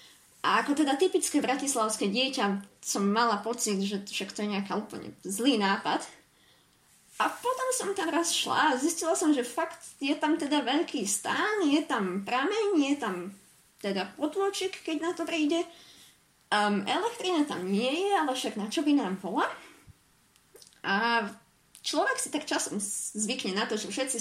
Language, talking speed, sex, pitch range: Slovak, 165 wpm, female, 210-300 Hz